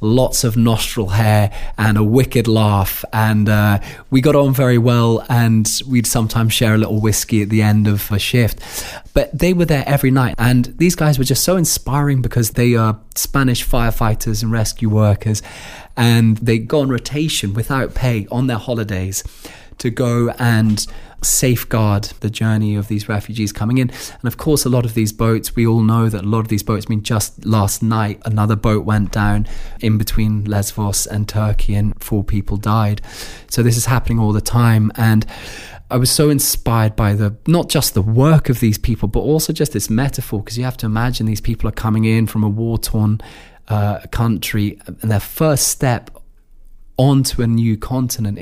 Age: 20-39